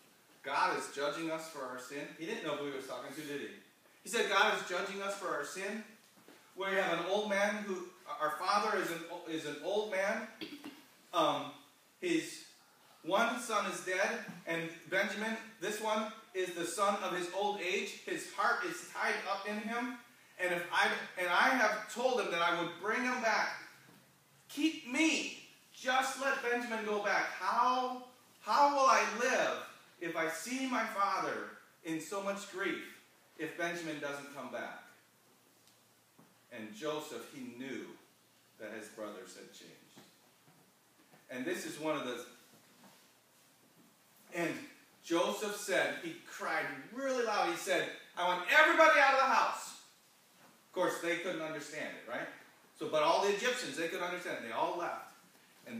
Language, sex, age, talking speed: English, male, 40-59, 165 wpm